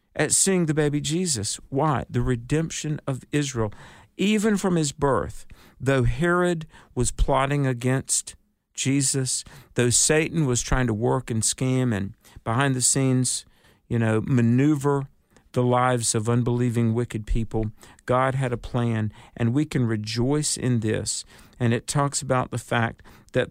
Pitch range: 115-145 Hz